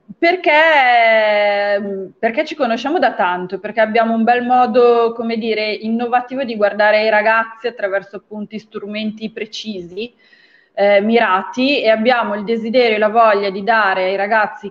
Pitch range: 195-235 Hz